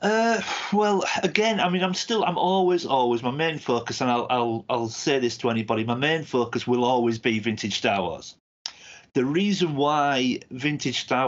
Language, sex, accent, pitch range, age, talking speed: English, male, British, 115-140 Hz, 40-59, 185 wpm